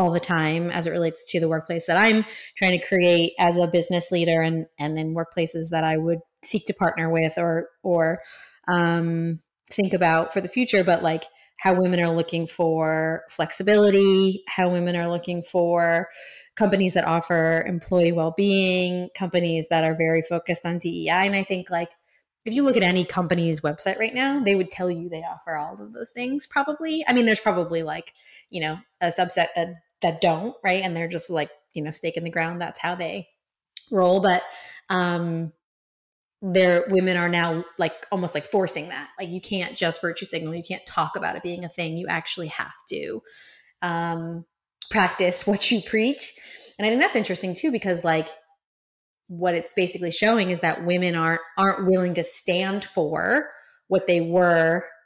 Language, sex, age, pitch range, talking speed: English, female, 20-39, 165-190 Hz, 185 wpm